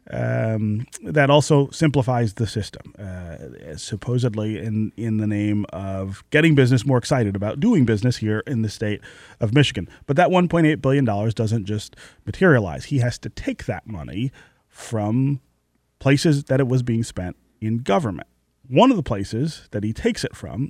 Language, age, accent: English, 30-49, American